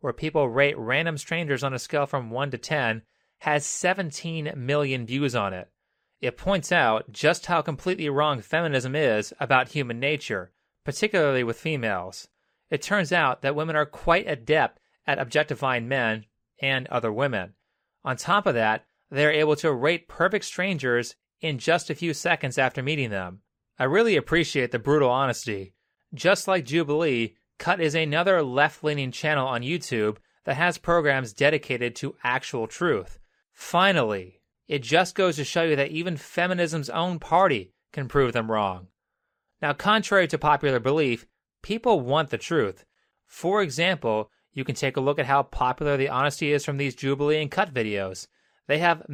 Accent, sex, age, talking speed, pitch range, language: American, male, 30-49, 165 wpm, 130-160 Hz, English